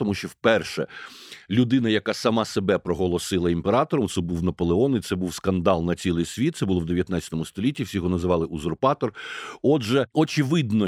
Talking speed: 160 wpm